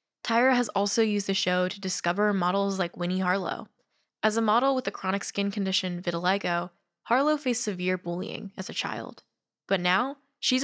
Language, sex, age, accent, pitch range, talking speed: English, female, 10-29, American, 190-230 Hz, 175 wpm